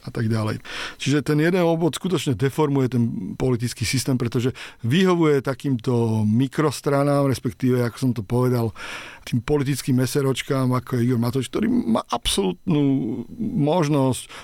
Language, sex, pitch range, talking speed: Slovak, male, 120-150 Hz, 135 wpm